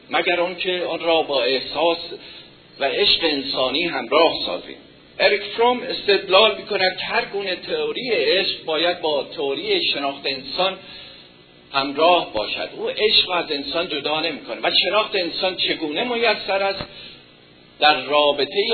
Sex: male